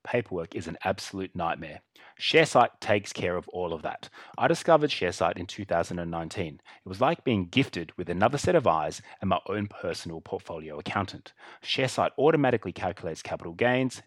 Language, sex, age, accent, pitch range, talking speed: English, male, 30-49, Australian, 90-125 Hz, 160 wpm